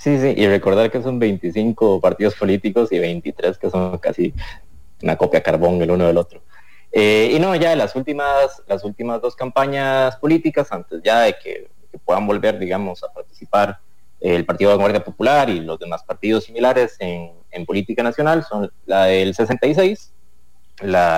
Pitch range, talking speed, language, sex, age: 90-130 Hz, 175 wpm, English, male, 30-49